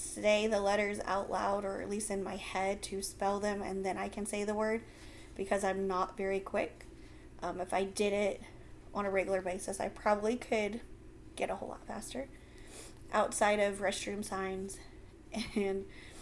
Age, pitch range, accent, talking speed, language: 30-49, 195-225 Hz, American, 180 wpm, English